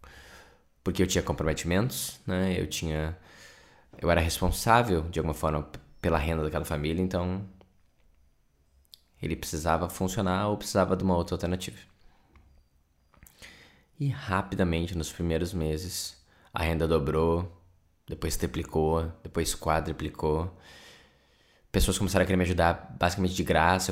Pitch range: 80-95 Hz